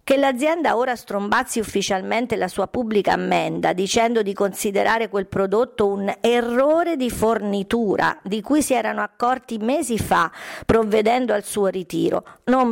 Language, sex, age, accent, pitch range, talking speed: Italian, female, 50-69, native, 200-245 Hz, 140 wpm